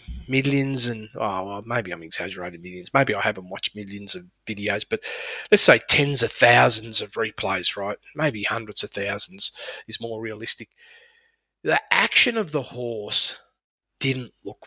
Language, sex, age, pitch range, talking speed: English, male, 30-49, 125-160 Hz, 150 wpm